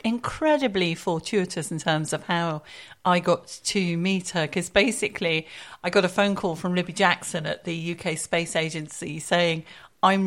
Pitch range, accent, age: 170-205 Hz, British, 40-59